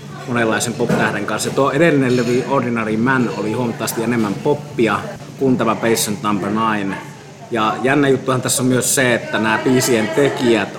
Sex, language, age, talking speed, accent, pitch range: male, Finnish, 30-49, 145 wpm, native, 100-120 Hz